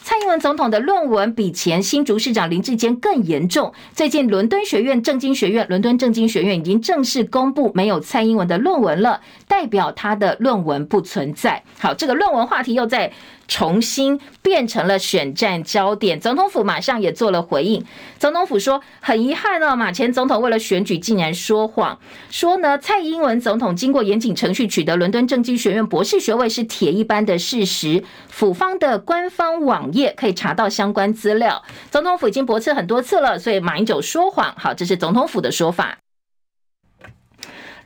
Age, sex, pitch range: 50-69, female, 205-285 Hz